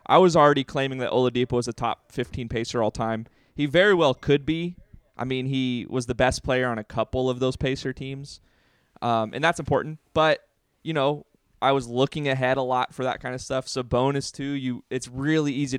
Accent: American